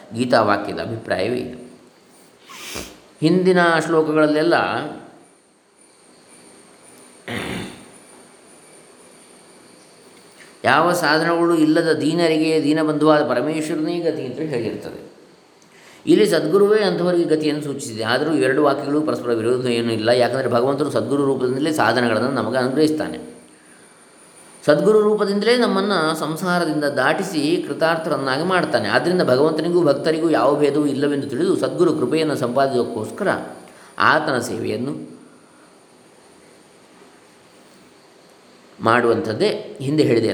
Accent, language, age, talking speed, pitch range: Indian, English, 20-39, 90 wpm, 125-170 Hz